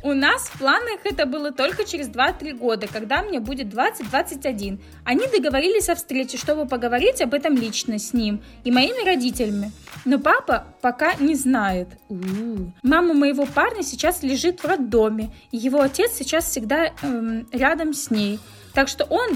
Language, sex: Russian, female